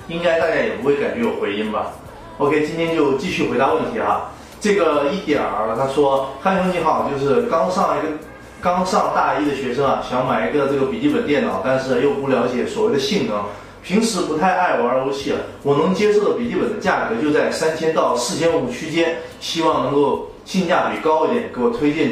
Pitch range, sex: 130-165 Hz, male